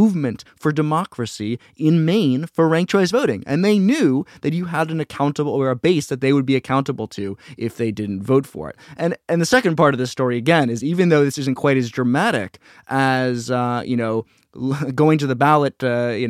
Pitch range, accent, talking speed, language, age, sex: 125-165 Hz, American, 215 wpm, English, 20-39, male